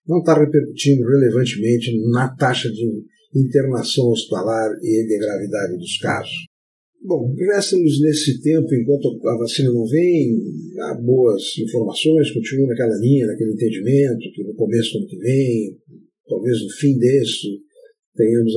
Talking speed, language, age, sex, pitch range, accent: 135 wpm, Portuguese, 50-69, male, 115-150 Hz, Brazilian